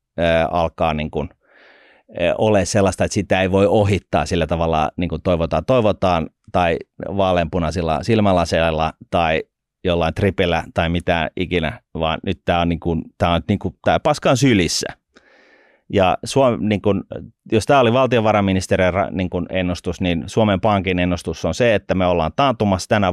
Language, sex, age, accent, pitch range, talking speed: Finnish, male, 30-49, native, 85-105 Hz, 145 wpm